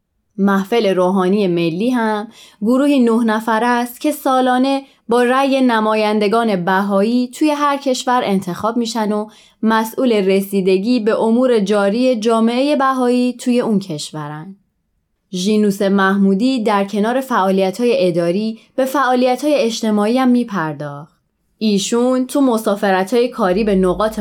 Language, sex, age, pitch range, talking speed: Persian, female, 20-39, 190-240 Hz, 120 wpm